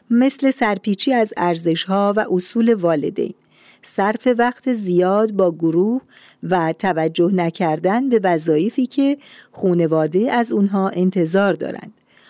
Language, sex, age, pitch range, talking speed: Persian, female, 50-69, 170-225 Hz, 110 wpm